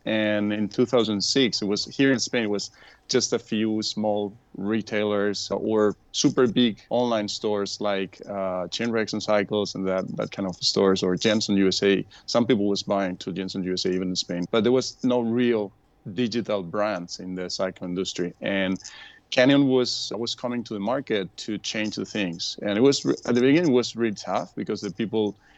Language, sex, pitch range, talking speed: English, male, 100-120 Hz, 190 wpm